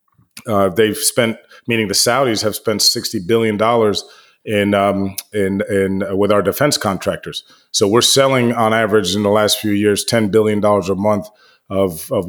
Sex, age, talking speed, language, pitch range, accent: male, 30-49, 185 wpm, English, 105-120 Hz, American